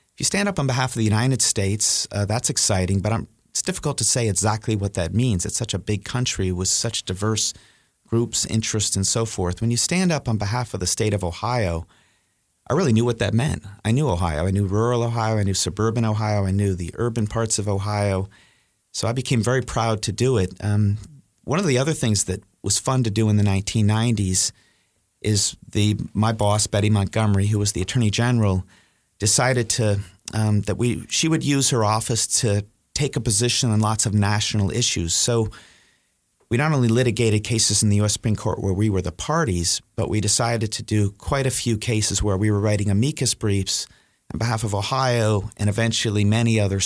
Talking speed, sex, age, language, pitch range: 205 wpm, male, 30-49, English, 100-120 Hz